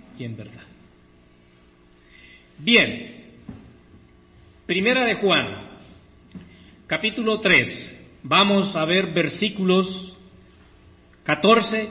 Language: Spanish